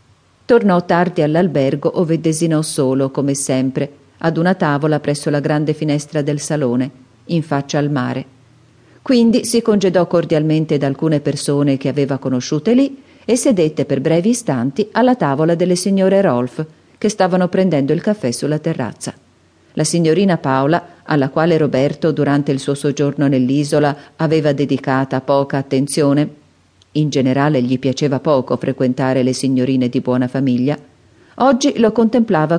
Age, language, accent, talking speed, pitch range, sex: 40-59, Italian, native, 145 wpm, 140-180 Hz, female